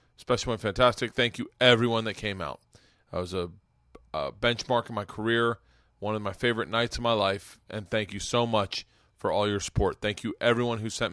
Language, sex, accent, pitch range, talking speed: English, male, American, 100-125 Hz, 210 wpm